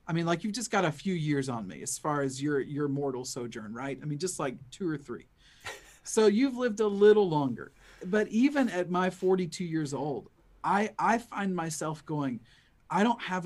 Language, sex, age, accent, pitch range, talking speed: English, male, 40-59, American, 135-185 Hz, 210 wpm